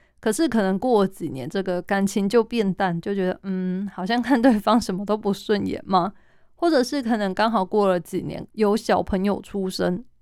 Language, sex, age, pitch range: Chinese, female, 20-39, 185-225 Hz